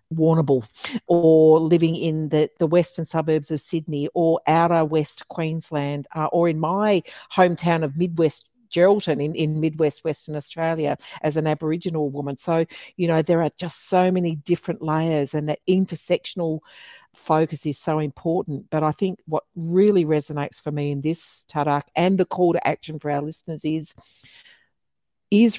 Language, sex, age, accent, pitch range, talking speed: English, female, 50-69, Australian, 150-175 Hz, 160 wpm